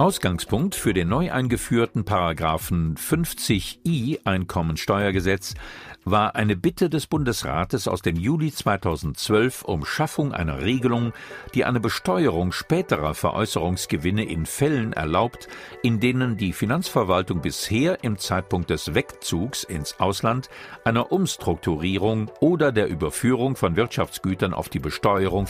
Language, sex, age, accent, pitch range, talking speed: German, male, 50-69, German, 90-135 Hz, 120 wpm